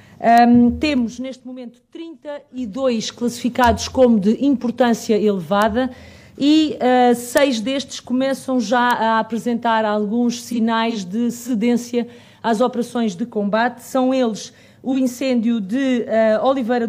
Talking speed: 105 wpm